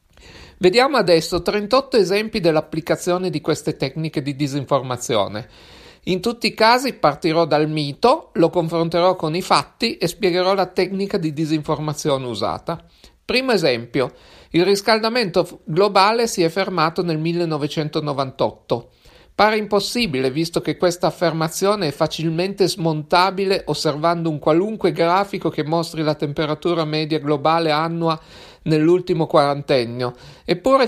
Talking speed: 120 wpm